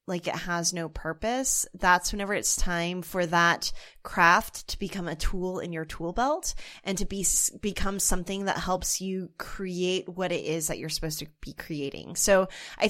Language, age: English, 20-39